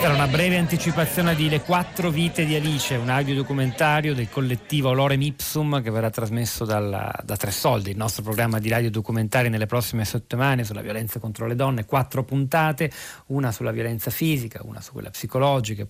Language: Italian